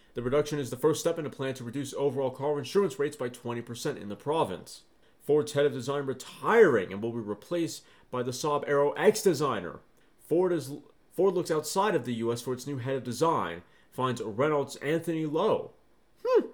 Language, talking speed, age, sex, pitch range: English, 195 wpm, 30-49, male, 125-160 Hz